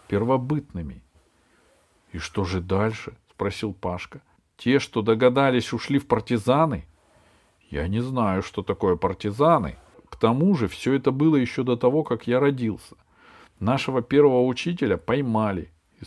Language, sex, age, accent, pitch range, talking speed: Russian, male, 40-59, native, 100-145 Hz, 150 wpm